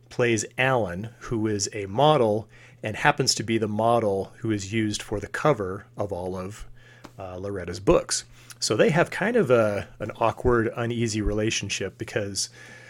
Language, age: English, 30-49